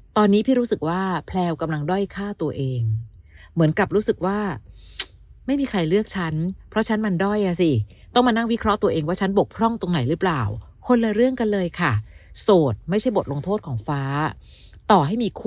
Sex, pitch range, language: female, 150-210 Hz, Thai